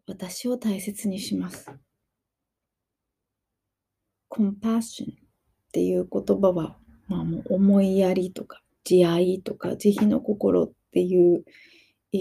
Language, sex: Japanese, female